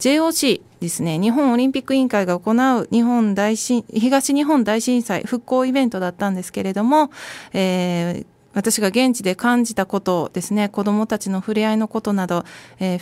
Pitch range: 180-255 Hz